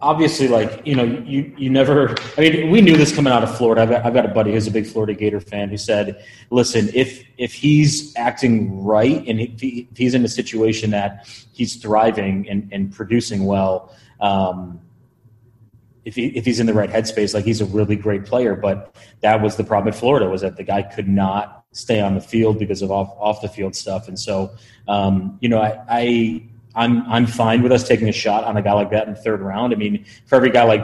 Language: English